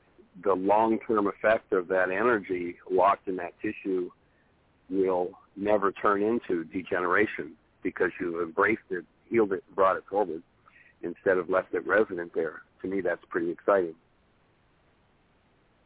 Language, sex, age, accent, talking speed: English, male, 50-69, American, 130 wpm